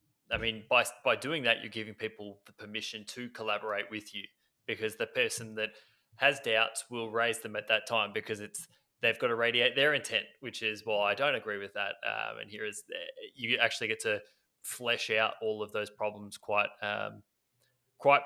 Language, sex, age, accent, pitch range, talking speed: English, male, 20-39, Australian, 105-115 Hz, 200 wpm